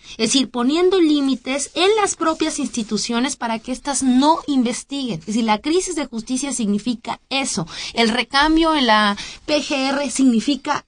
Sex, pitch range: female, 225-285 Hz